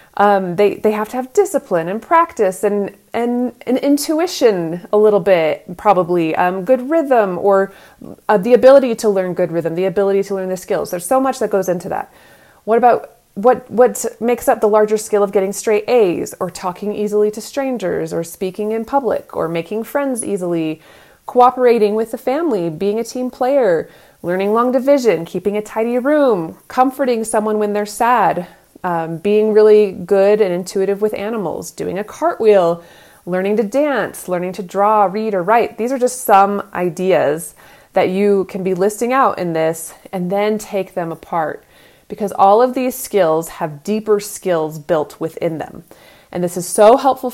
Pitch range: 190-245 Hz